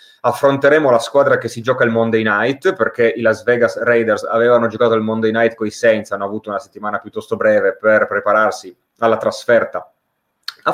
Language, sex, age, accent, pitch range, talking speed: Italian, male, 30-49, native, 110-140 Hz, 180 wpm